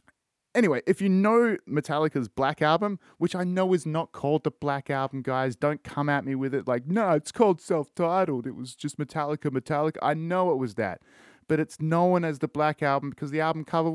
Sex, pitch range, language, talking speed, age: male, 130-185 Hz, English, 210 wpm, 30-49